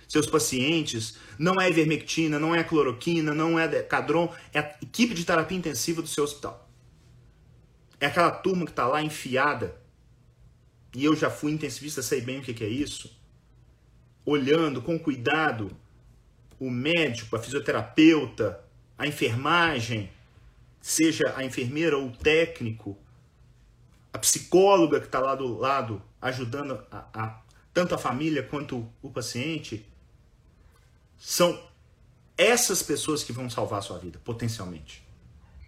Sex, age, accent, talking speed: male, 40-59, Brazilian, 135 wpm